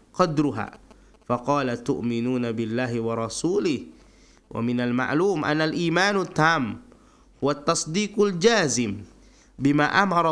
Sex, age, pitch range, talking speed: male, 20-39, 125-160 Hz, 85 wpm